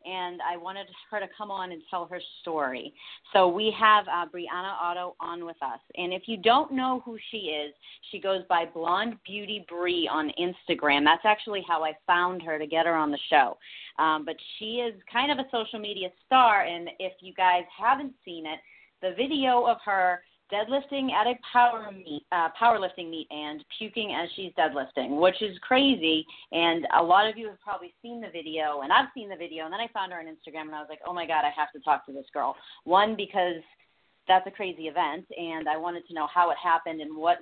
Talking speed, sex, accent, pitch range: 220 wpm, female, American, 160-210 Hz